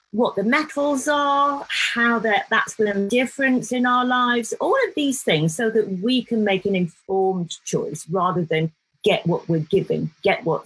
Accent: British